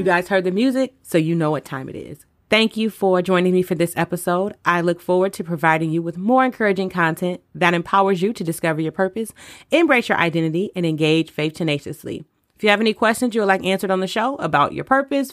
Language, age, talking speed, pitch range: English, 30-49, 230 wpm, 170-220 Hz